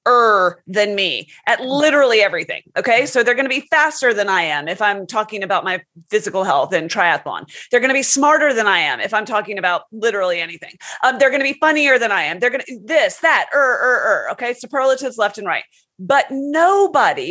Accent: American